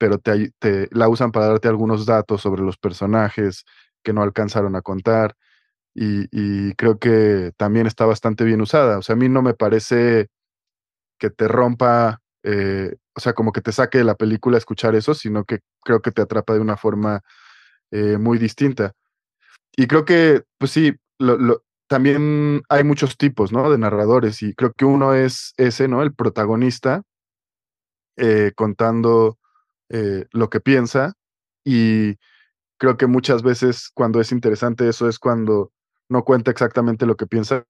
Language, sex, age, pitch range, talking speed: Spanish, male, 20-39, 105-120 Hz, 170 wpm